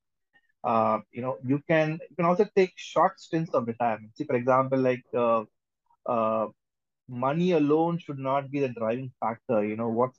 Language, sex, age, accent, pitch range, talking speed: English, male, 30-49, Indian, 125-155 Hz, 175 wpm